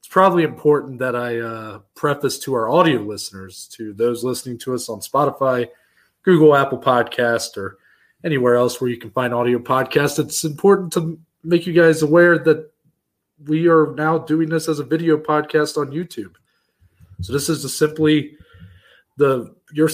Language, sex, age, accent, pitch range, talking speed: English, male, 20-39, American, 120-155 Hz, 170 wpm